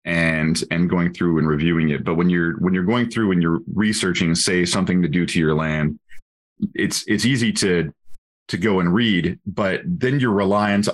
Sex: male